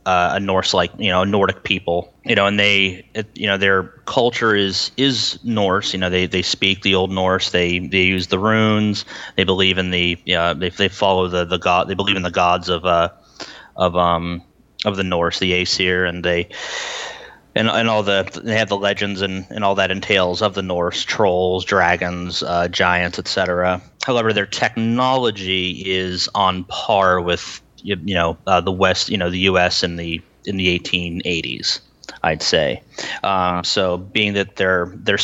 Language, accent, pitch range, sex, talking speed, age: English, American, 90-100 Hz, male, 190 wpm, 30-49